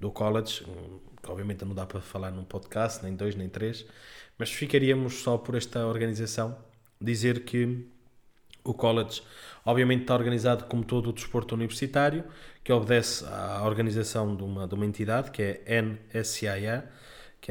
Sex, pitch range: male, 105-125 Hz